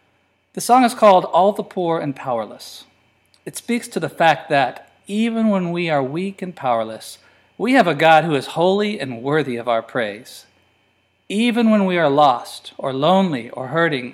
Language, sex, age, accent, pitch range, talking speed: English, male, 40-59, American, 115-180 Hz, 185 wpm